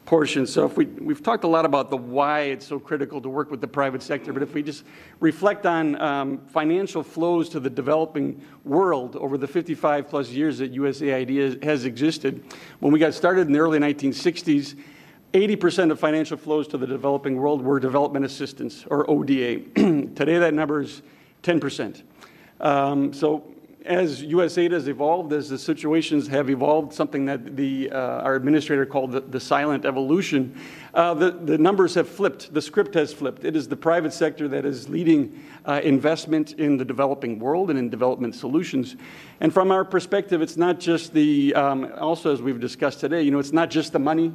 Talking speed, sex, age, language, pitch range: 190 wpm, male, 50-69, English, 140-160 Hz